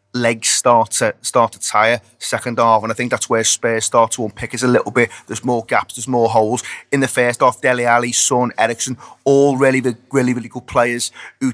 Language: English